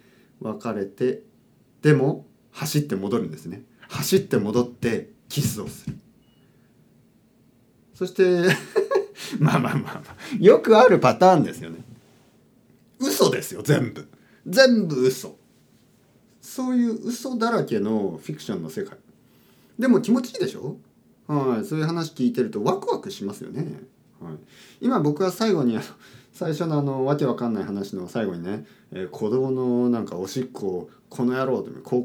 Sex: male